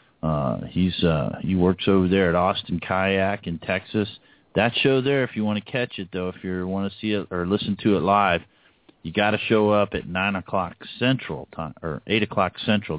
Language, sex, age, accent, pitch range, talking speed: English, male, 40-59, American, 85-105 Hz, 215 wpm